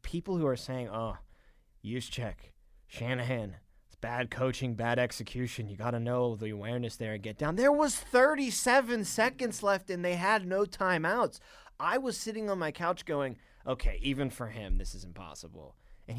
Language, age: English, 20-39